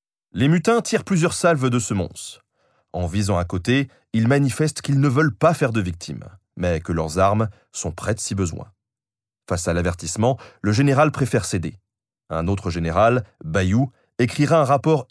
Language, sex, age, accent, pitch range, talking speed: French, male, 30-49, French, 95-150 Hz, 170 wpm